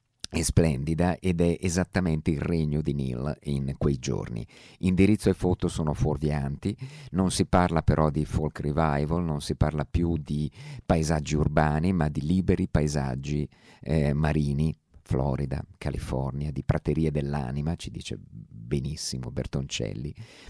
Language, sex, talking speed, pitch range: Italian, male, 135 wpm, 75-90 Hz